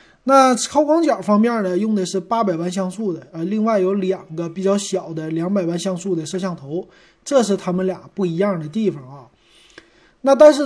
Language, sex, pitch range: Chinese, male, 170-210 Hz